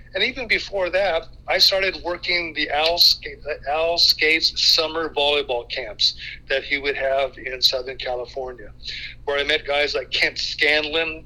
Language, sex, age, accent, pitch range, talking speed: English, male, 50-69, American, 135-165 Hz, 155 wpm